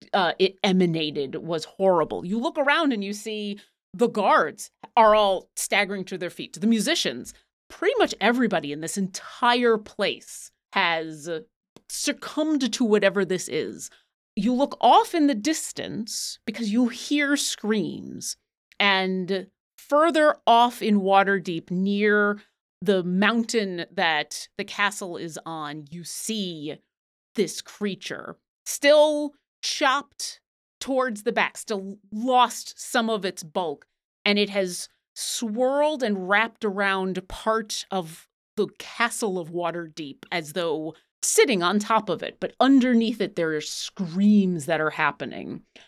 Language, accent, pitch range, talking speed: English, American, 185-245 Hz, 135 wpm